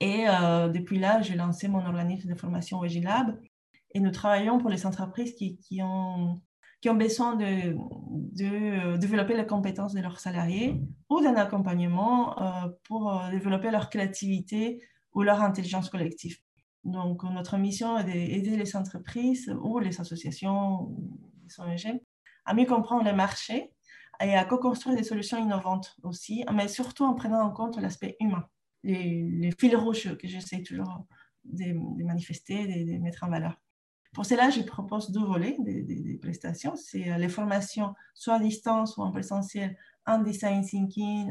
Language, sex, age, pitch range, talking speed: French, female, 20-39, 180-220 Hz, 160 wpm